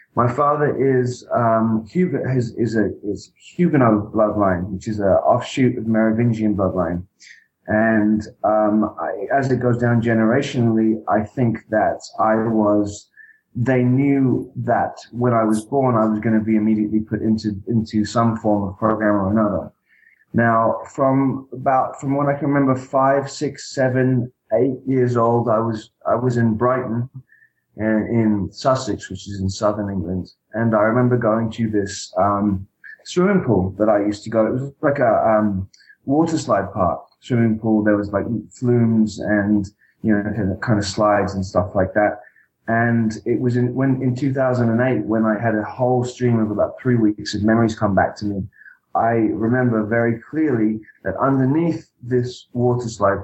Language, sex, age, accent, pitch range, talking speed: English, male, 20-39, British, 105-125 Hz, 170 wpm